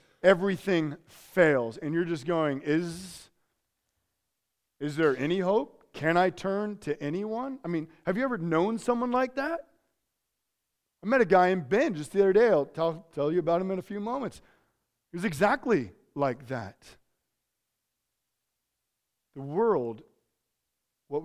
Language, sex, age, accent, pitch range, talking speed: English, male, 40-59, American, 145-185 Hz, 150 wpm